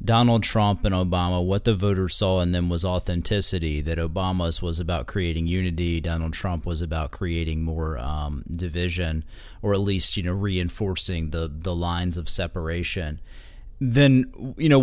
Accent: American